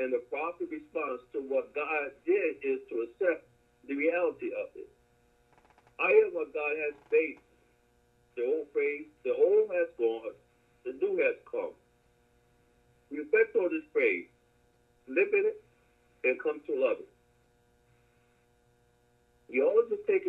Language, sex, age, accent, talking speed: English, male, 50-69, American, 140 wpm